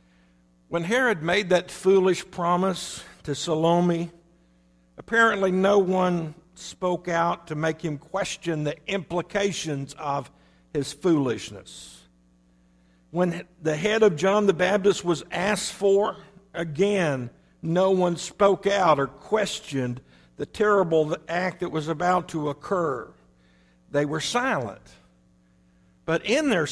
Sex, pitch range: male, 125-180 Hz